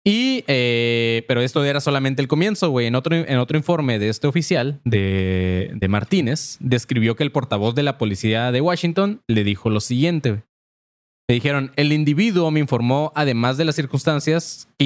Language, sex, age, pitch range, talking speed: Spanish, male, 20-39, 110-150 Hz, 180 wpm